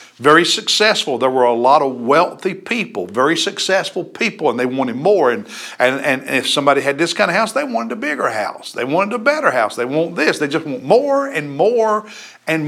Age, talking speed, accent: 60-79, 215 wpm, American